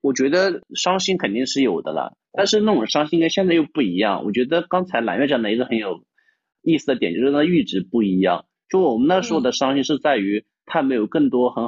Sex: male